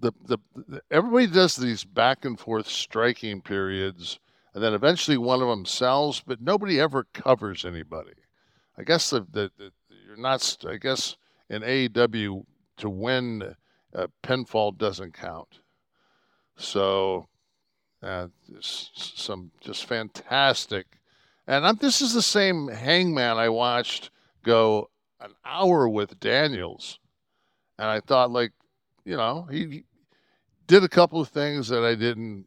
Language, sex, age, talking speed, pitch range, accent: English, male, 60-79, 140 wpm, 100-130 Hz, American